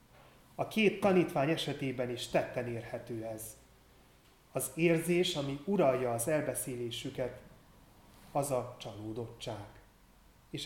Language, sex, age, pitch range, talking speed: Hungarian, male, 30-49, 120-155 Hz, 100 wpm